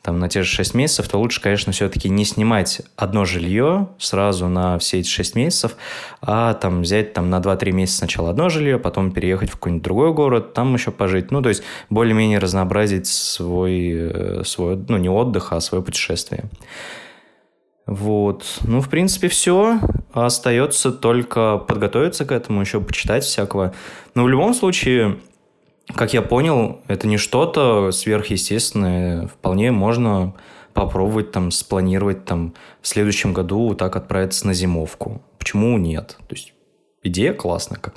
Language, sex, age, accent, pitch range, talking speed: Russian, male, 20-39, native, 95-115 Hz, 150 wpm